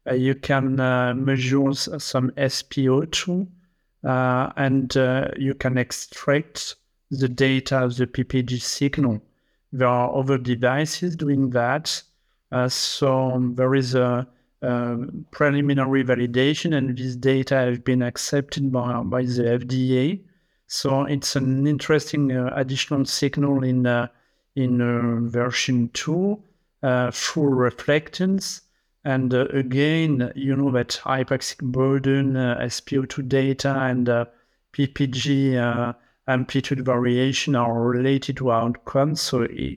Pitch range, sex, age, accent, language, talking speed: 125-140 Hz, male, 50-69, French, English, 120 wpm